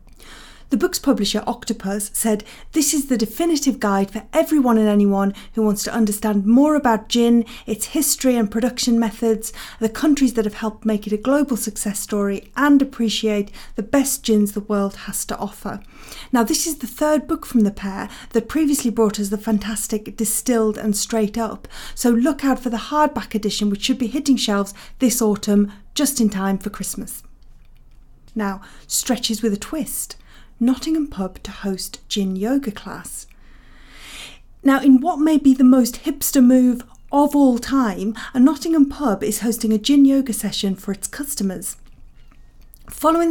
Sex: female